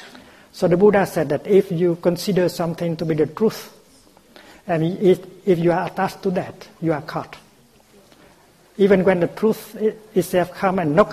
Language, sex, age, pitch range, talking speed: English, male, 60-79, 145-180 Hz, 165 wpm